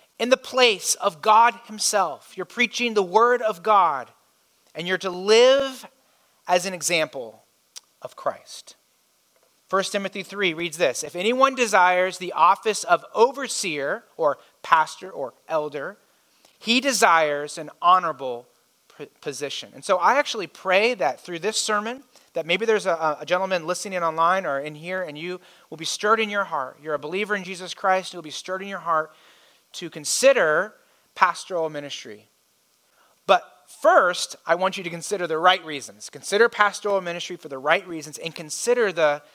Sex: male